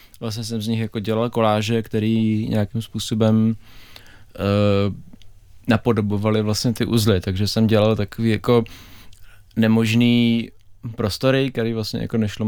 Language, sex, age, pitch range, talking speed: Czech, male, 20-39, 105-115 Hz, 125 wpm